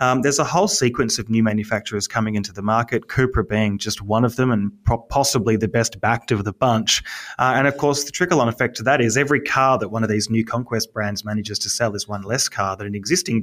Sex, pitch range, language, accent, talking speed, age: male, 110-130 Hz, English, Australian, 245 wpm, 20-39